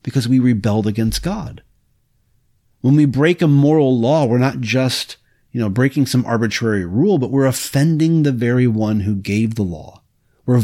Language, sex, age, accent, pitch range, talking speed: English, male, 40-59, American, 105-135 Hz, 175 wpm